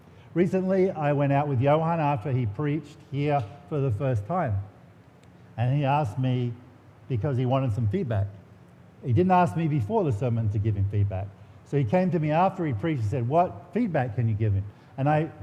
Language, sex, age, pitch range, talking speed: English, male, 50-69, 115-160 Hz, 200 wpm